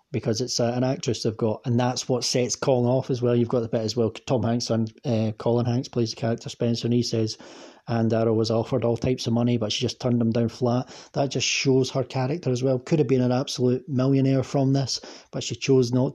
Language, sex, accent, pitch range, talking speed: English, male, British, 115-130 Hz, 250 wpm